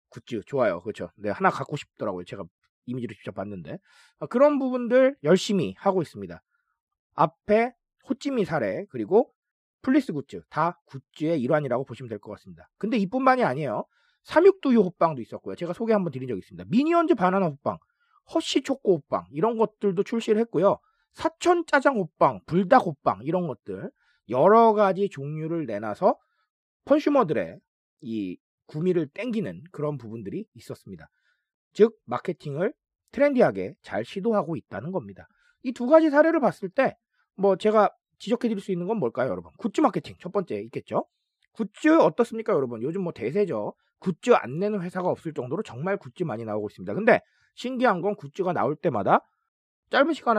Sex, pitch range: male, 165-260 Hz